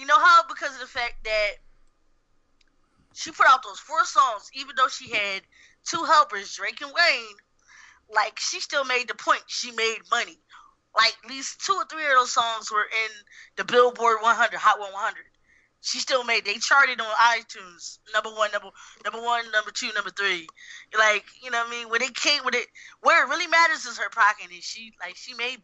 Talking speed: 205 wpm